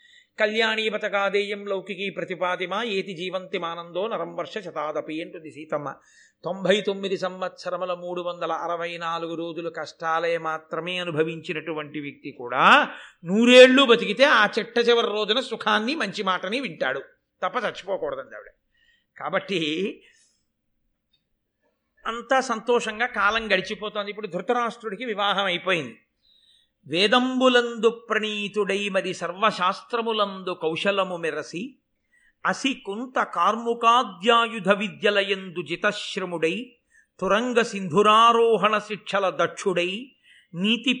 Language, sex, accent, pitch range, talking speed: Telugu, male, native, 175-230 Hz, 90 wpm